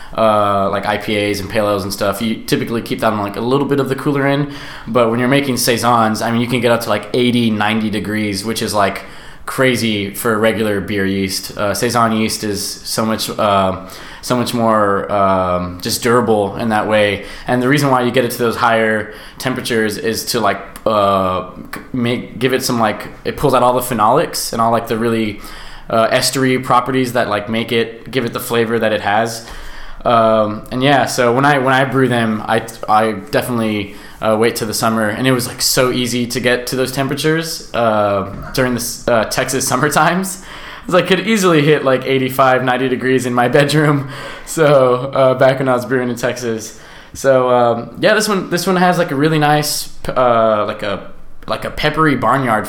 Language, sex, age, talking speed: English, male, 20-39, 205 wpm